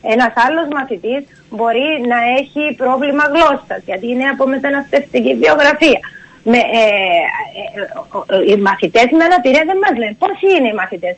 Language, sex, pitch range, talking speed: Greek, female, 220-270 Hz, 130 wpm